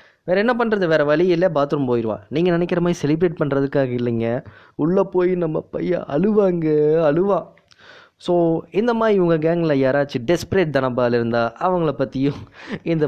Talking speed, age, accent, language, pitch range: 140 wpm, 20-39, native, Tamil, 125-180 Hz